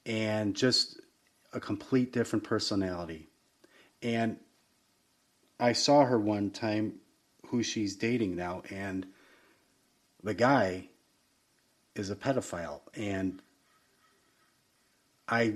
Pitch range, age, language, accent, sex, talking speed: 95-110 Hz, 30-49, English, American, male, 95 wpm